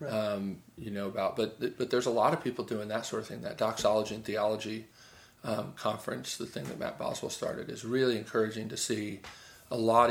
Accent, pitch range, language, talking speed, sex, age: American, 110-125 Hz, English, 210 wpm, male, 40-59